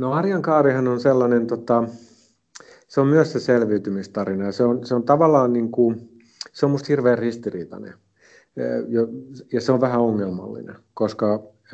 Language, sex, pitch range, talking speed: Finnish, male, 100-120 Hz, 145 wpm